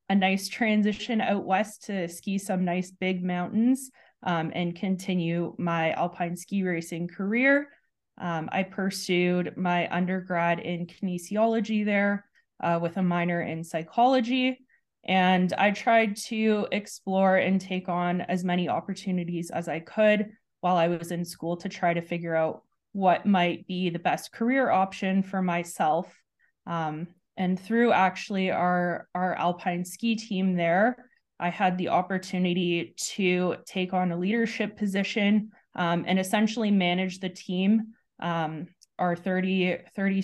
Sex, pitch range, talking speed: female, 175-200 Hz, 145 wpm